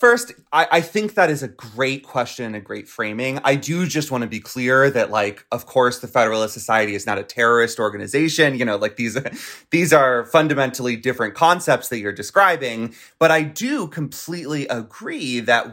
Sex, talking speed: male, 190 wpm